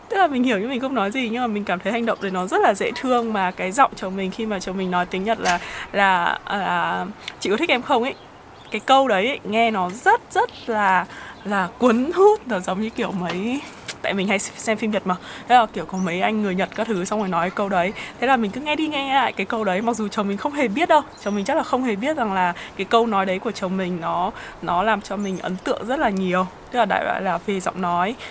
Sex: female